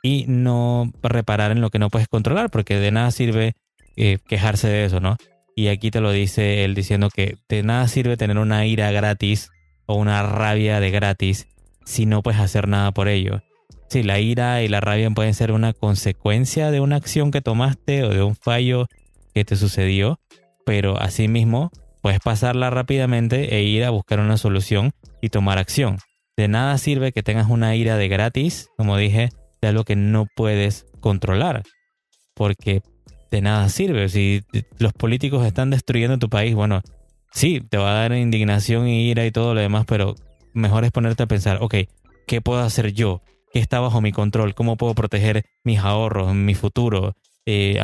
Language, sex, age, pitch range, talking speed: Spanish, male, 20-39, 100-120 Hz, 185 wpm